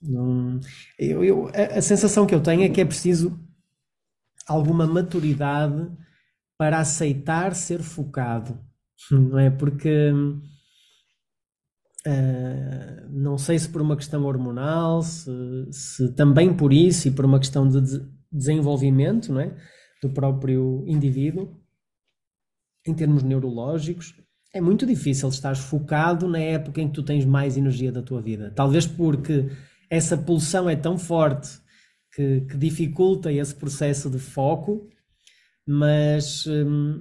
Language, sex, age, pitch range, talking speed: Portuguese, male, 20-39, 135-165 Hz, 130 wpm